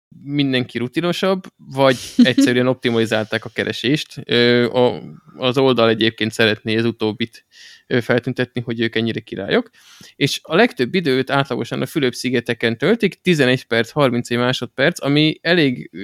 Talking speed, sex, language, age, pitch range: 120 wpm, male, Hungarian, 20-39, 115-140 Hz